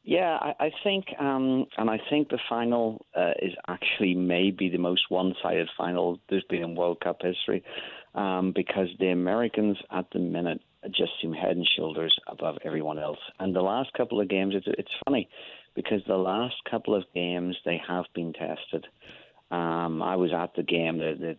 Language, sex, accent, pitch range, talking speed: English, male, British, 85-100 Hz, 185 wpm